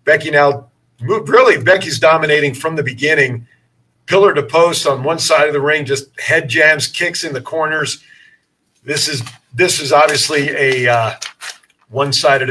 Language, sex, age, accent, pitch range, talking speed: English, male, 50-69, American, 125-150 Hz, 155 wpm